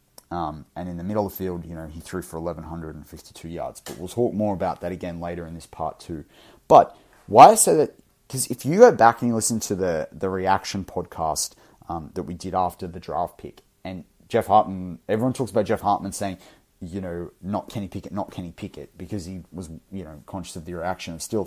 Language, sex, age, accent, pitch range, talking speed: English, male, 30-49, Australian, 85-100 Hz, 225 wpm